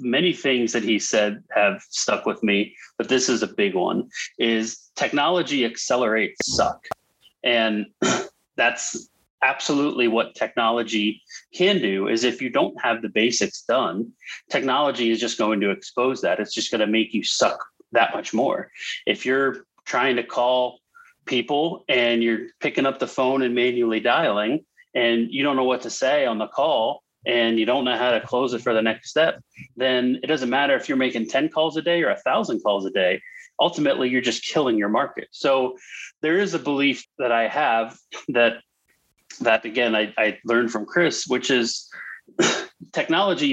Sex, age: male, 30-49